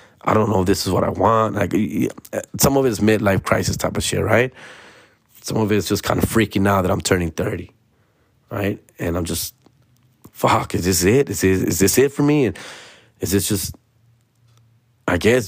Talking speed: 210 wpm